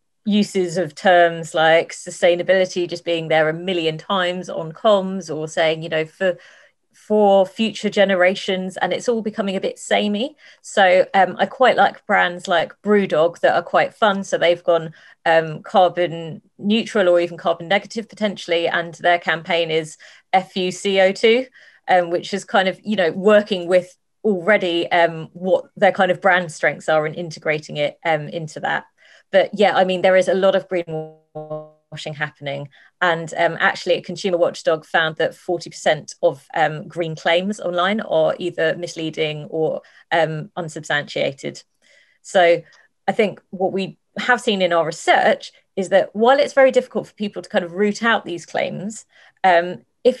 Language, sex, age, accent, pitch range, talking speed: English, female, 30-49, British, 165-200 Hz, 165 wpm